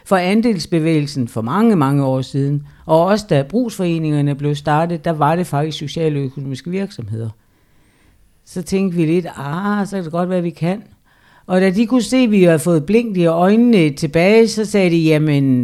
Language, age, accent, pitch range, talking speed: Danish, 60-79, native, 150-210 Hz, 185 wpm